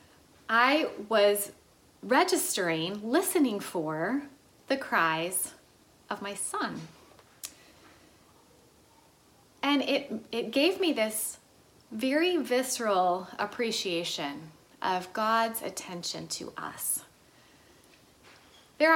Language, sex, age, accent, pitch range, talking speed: English, female, 30-49, American, 185-255 Hz, 80 wpm